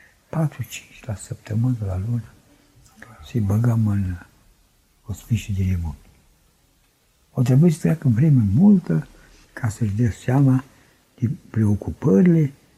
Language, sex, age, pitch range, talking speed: Romanian, male, 60-79, 100-140 Hz, 115 wpm